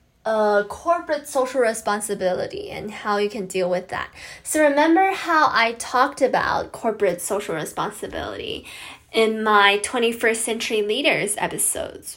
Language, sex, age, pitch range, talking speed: English, female, 10-29, 210-275 Hz, 130 wpm